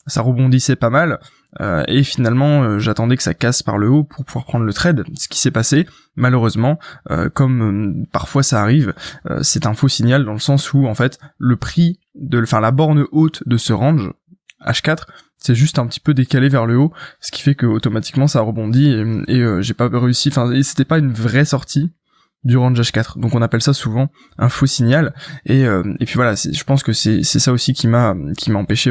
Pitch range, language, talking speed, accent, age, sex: 120-145 Hz, French, 230 wpm, French, 20-39, male